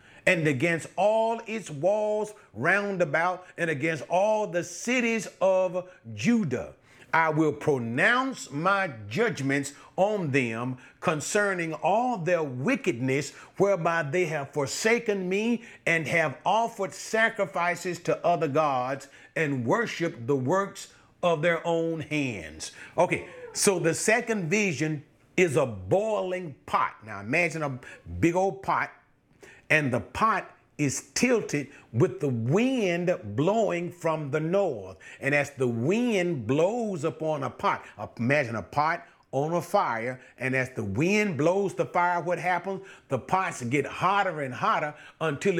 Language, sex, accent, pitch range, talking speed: English, male, American, 145-195 Hz, 135 wpm